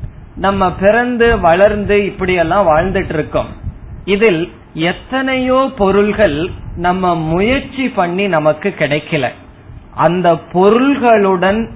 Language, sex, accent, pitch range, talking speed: Tamil, male, native, 155-205 Hz, 80 wpm